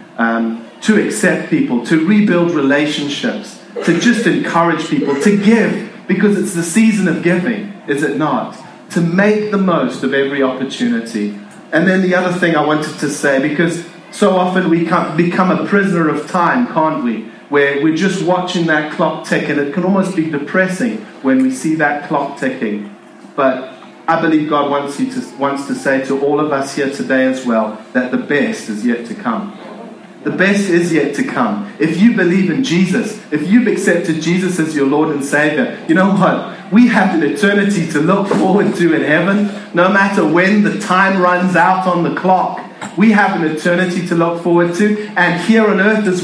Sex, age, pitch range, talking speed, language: male, 30-49, 155-205 Hz, 190 wpm, English